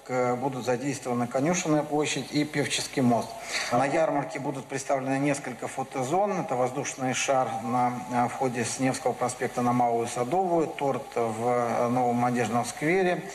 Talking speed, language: 130 wpm, Russian